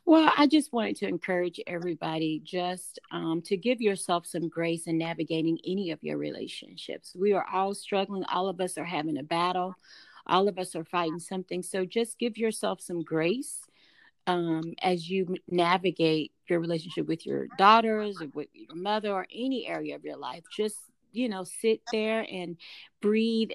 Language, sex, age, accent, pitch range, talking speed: English, female, 40-59, American, 165-210 Hz, 175 wpm